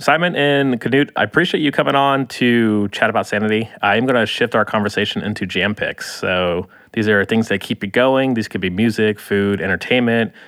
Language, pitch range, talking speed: English, 100-120 Hz, 200 wpm